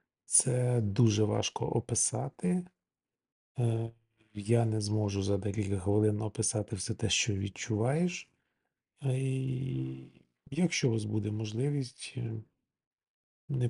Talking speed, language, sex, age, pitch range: 95 wpm, Ukrainian, male, 40-59, 105-120 Hz